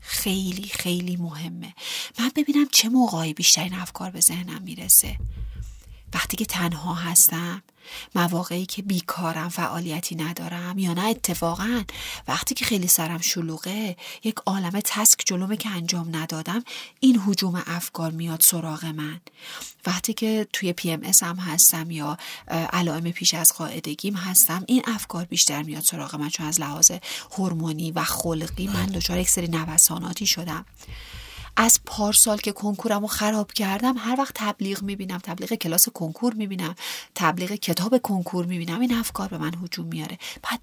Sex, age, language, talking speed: female, 40-59, Persian, 140 wpm